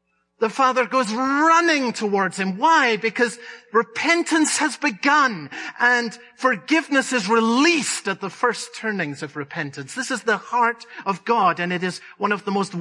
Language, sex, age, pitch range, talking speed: English, male, 50-69, 185-255 Hz, 160 wpm